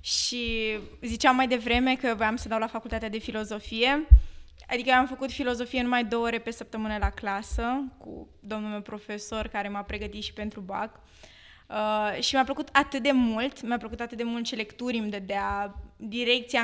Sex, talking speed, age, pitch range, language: female, 190 wpm, 20-39, 210-250 Hz, Romanian